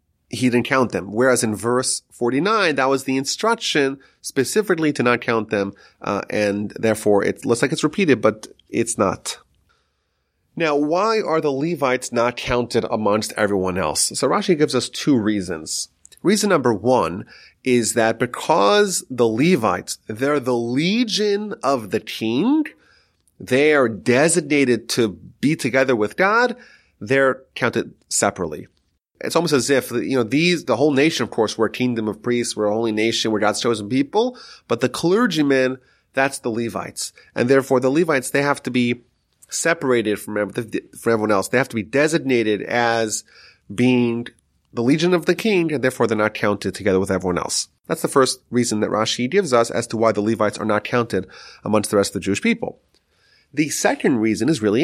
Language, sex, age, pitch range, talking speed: English, male, 30-49, 110-145 Hz, 175 wpm